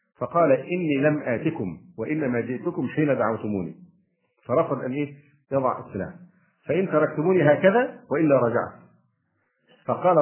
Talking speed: 110 wpm